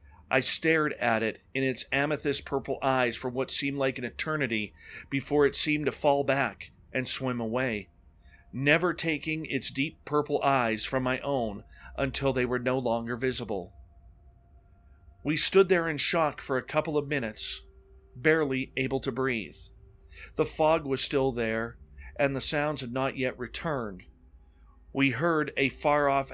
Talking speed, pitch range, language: 155 wpm, 100-140 Hz, English